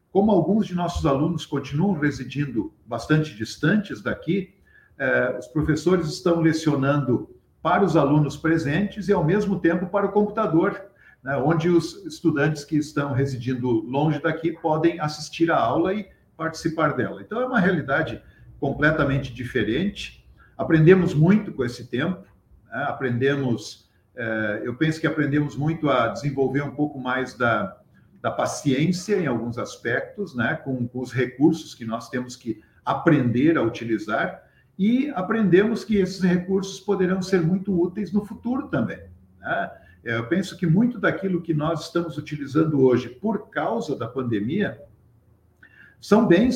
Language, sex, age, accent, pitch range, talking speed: Portuguese, male, 50-69, Brazilian, 135-180 Hz, 145 wpm